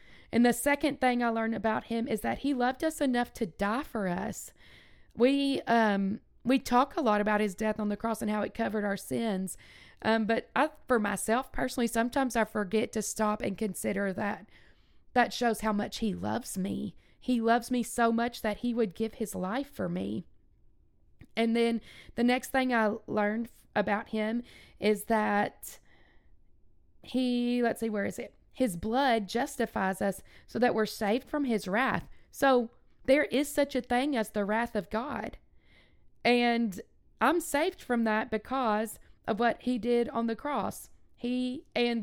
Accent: American